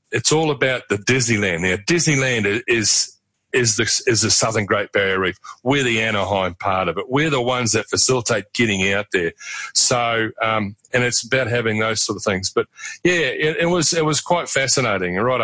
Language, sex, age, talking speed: English, male, 40-59, 195 wpm